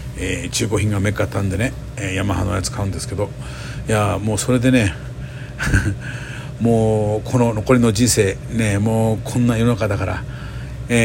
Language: Japanese